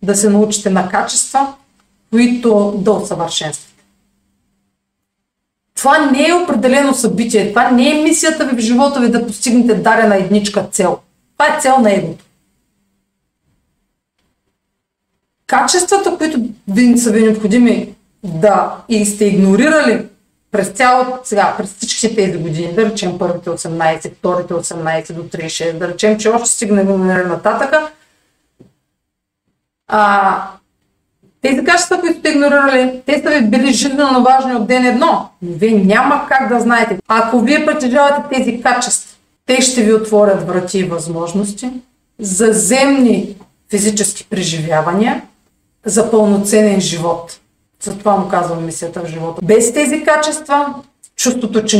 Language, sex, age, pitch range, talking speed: Bulgarian, female, 40-59, 195-255 Hz, 130 wpm